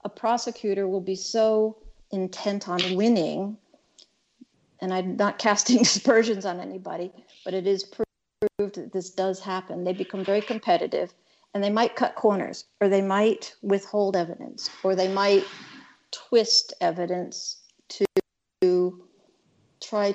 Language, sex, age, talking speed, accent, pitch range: English, female, 50-69, 130 wpm, American, 185-220 Hz